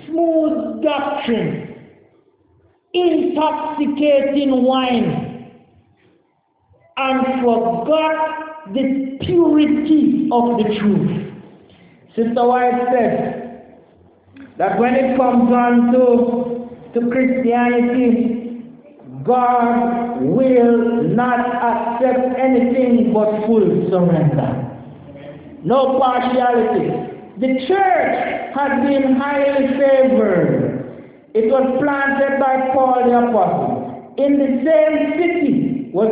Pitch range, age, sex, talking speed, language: 220-280 Hz, 60-79, male, 85 wpm, English